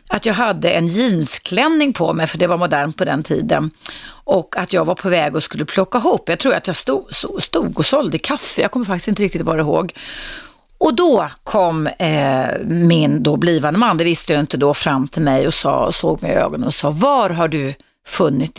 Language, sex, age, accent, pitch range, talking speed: Swedish, female, 30-49, native, 155-205 Hz, 220 wpm